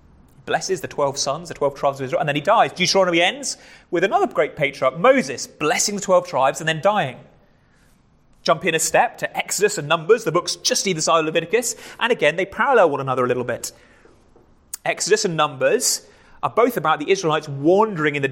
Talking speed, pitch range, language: 205 wpm, 140-195 Hz, English